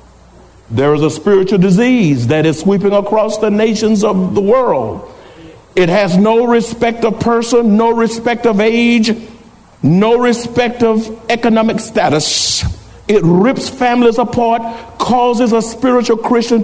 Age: 60-79